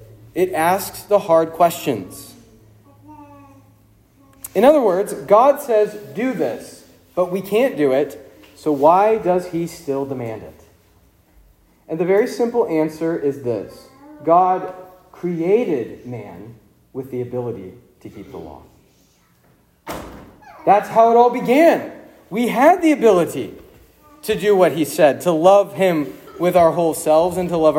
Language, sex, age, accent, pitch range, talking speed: English, male, 40-59, American, 145-215 Hz, 140 wpm